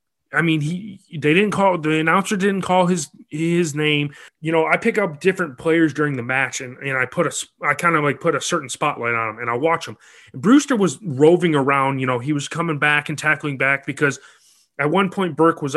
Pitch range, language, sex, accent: 135-170 Hz, English, male, American